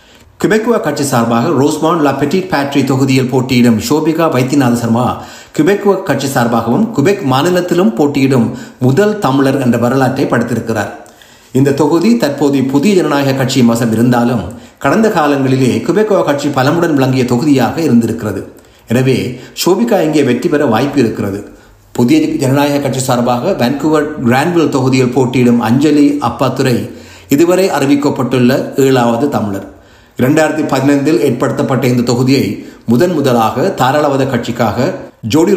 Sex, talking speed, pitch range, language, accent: male, 115 wpm, 120-150 Hz, Tamil, native